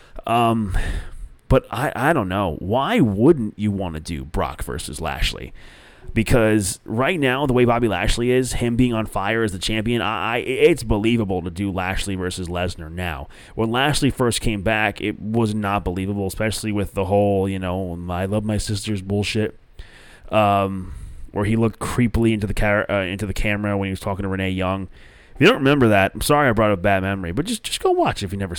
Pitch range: 95-120 Hz